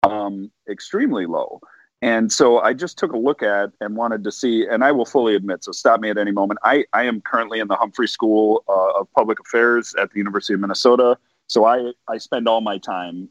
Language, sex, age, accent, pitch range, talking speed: English, male, 40-59, American, 95-115 Hz, 225 wpm